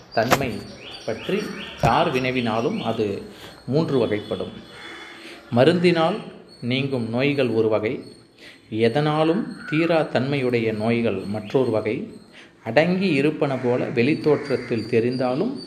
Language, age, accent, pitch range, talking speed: Tamil, 30-49, native, 115-155 Hz, 90 wpm